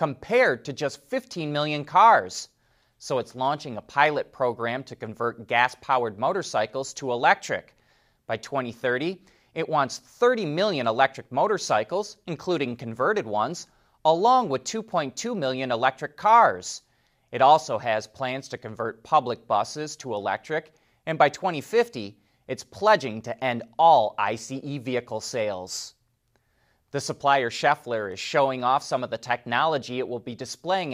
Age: 30-49